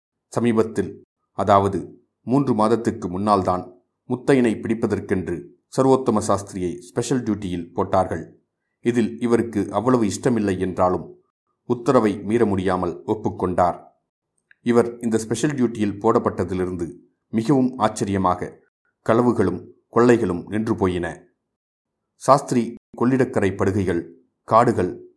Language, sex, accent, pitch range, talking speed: Tamil, male, native, 95-115 Hz, 85 wpm